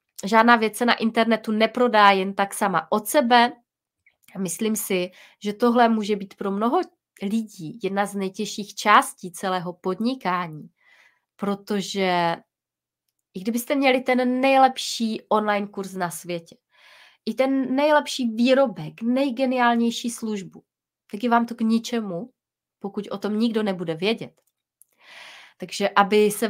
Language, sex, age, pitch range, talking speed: Czech, female, 30-49, 190-240 Hz, 130 wpm